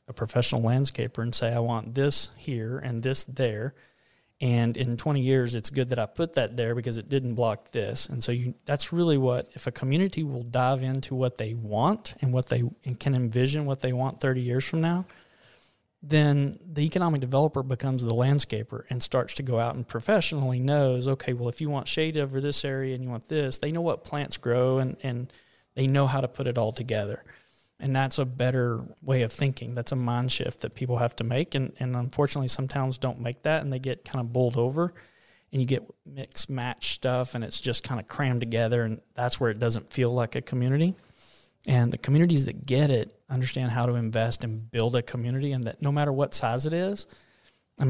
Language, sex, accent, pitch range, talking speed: English, male, American, 120-140 Hz, 215 wpm